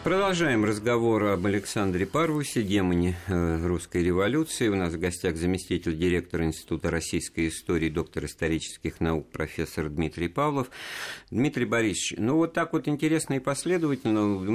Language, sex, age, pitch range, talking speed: Russian, male, 50-69, 85-115 Hz, 135 wpm